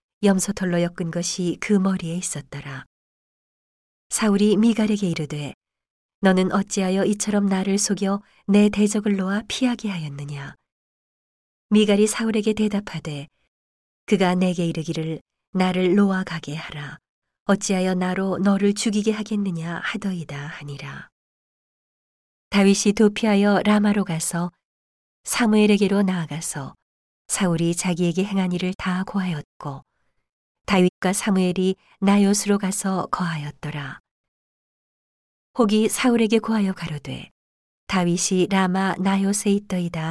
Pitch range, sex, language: 165-205 Hz, female, Korean